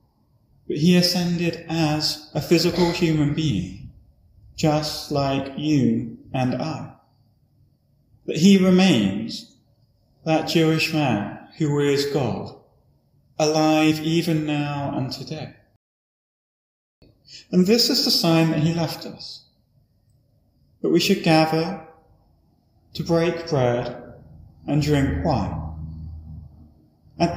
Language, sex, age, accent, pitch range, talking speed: English, male, 30-49, British, 125-165 Hz, 105 wpm